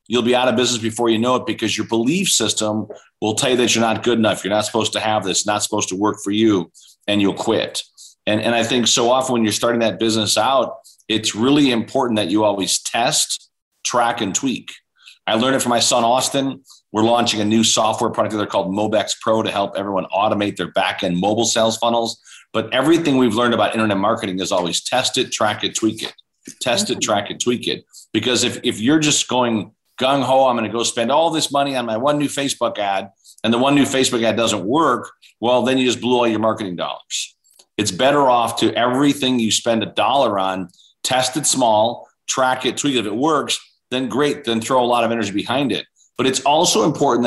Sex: male